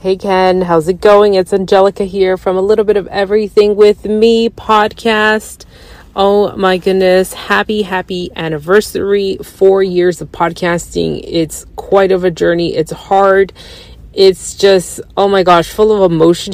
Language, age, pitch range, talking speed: English, 30-49, 165-200 Hz, 150 wpm